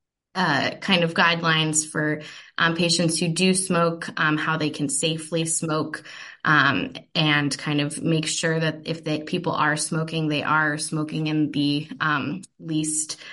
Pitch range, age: 155-180 Hz, 20-39